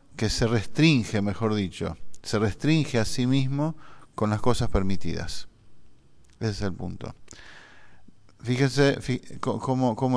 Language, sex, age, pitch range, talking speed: English, male, 50-69, 105-130 Hz, 120 wpm